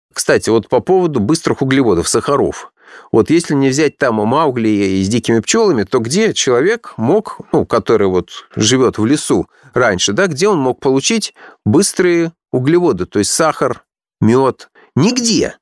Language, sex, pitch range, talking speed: Russian, male, 105-150 Hz, 150 wpm